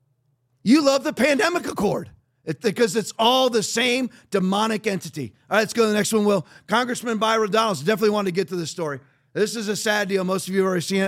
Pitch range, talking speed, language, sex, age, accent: 150-215 Hz, 235 wpm, English, male, 40-59, American